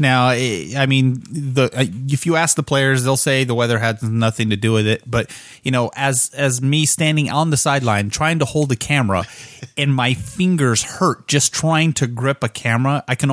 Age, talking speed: 30-49, 205 wpm